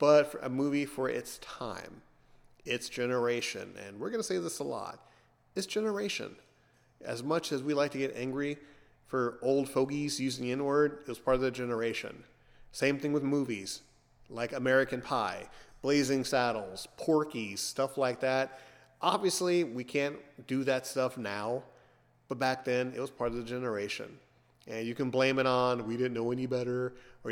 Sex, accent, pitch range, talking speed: male, American, 120-140 Hz, 175 wpm